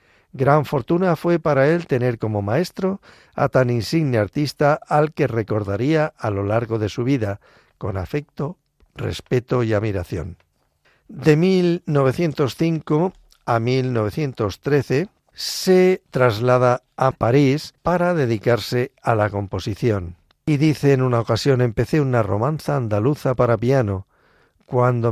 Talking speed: 120 wpm